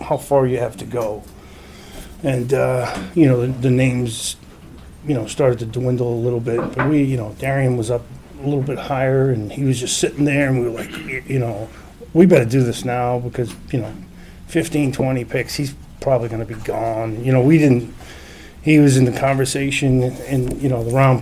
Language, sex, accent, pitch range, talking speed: English, male, American, 120-140 Hz, 210 wpm